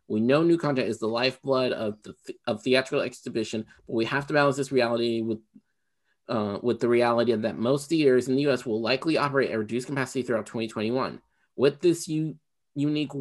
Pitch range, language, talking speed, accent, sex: 120-150 Hz, English, 195 wpm, American, male